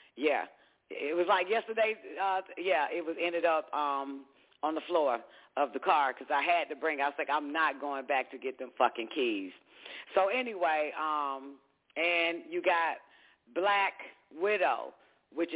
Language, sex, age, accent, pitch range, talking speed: English, female, 40-59, American, 120-165 Hz, 175 wpm